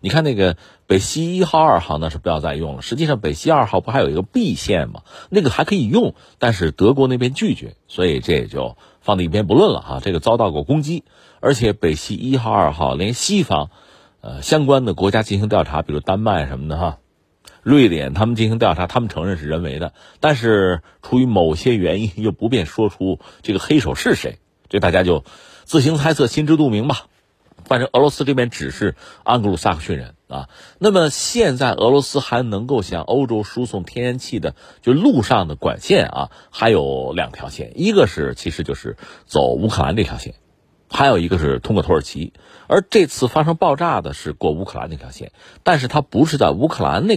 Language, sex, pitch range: Chinese, male, 80-125 Hz